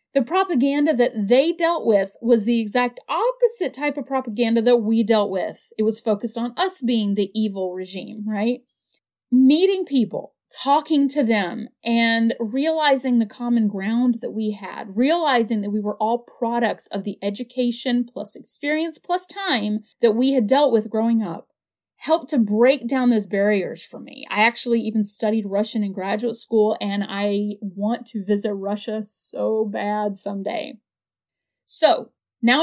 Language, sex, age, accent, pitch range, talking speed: English, female, 30-49, American, 210-270 Hz, 160 wpm